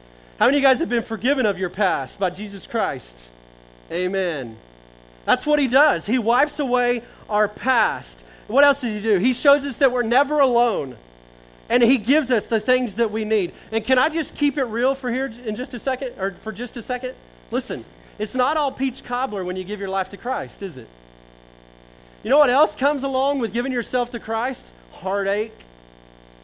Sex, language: male, English